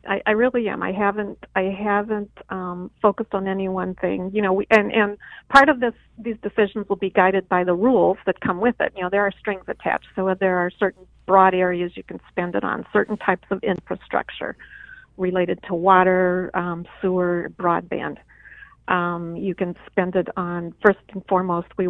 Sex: female